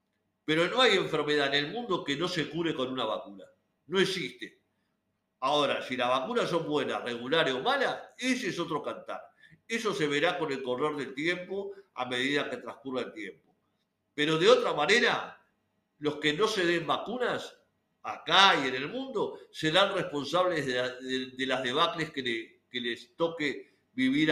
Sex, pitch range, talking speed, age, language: male, 130-180 Hz, 180 wpm, 50-69, Spanish